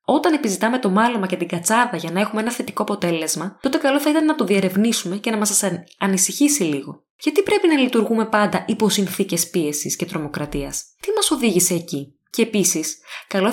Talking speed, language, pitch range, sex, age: 185 wpm, Greek, 180-230 Hz, female, 20-39